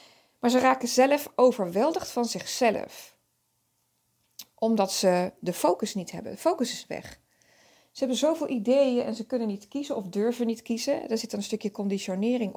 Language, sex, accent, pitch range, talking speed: Dutch, female, Dutch, 195-250 Hz, 170 wpm